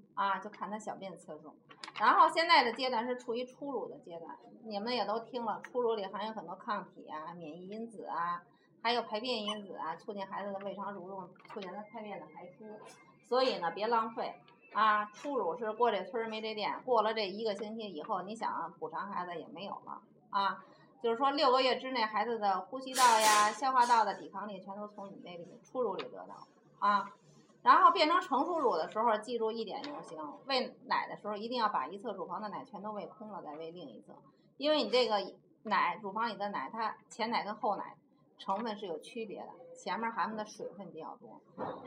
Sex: female